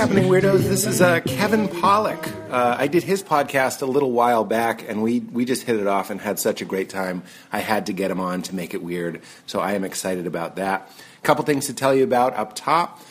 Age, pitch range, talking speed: 30-49, 100-140 Hz, 250 wpm